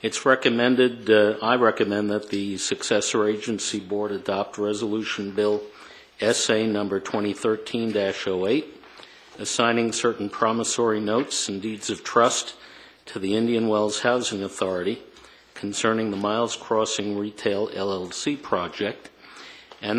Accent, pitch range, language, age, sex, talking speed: American, 105-120 Hz, English, 50-69, male, 115 wpm